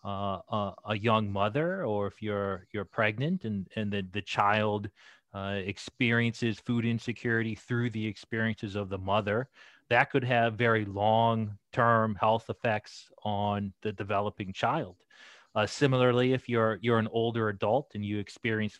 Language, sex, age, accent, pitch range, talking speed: English, male, 30-49, American, 100-120 Hz, 155 wpm